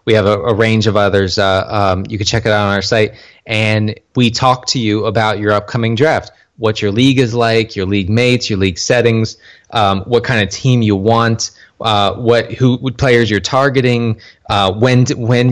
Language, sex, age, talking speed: English, male, 20-39, 210 wpm